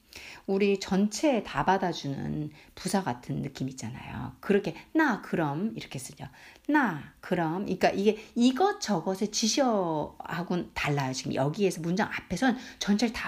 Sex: female